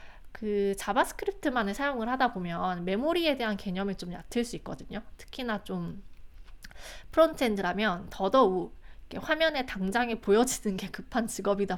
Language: Korean